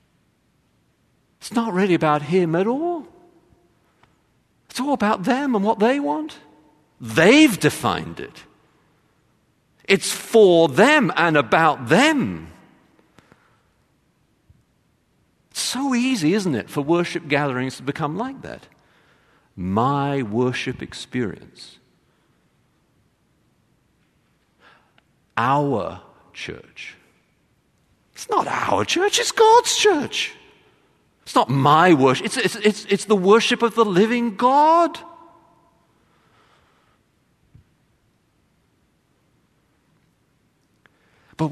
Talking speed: 90 wpm